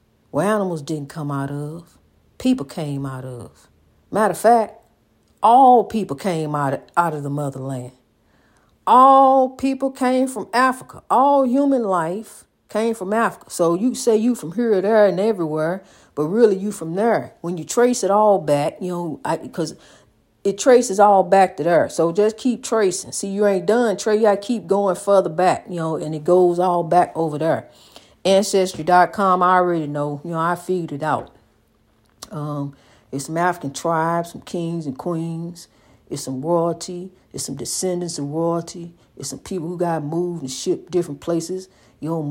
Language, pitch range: English, 160-210 Hz